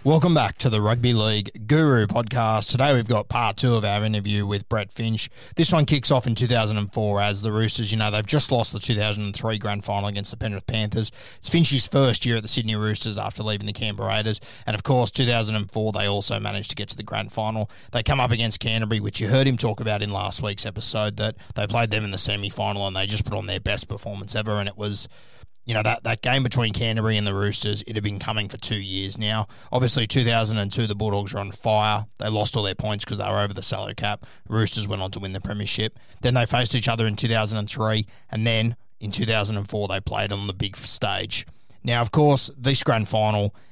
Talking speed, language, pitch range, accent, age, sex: 245 wpm, English, 105-120 Hz, Australian, 20-39, male